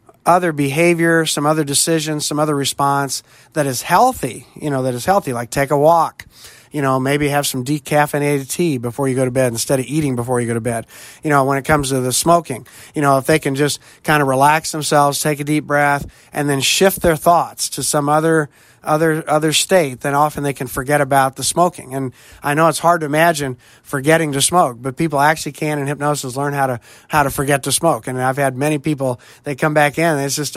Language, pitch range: English, 135-155 Hz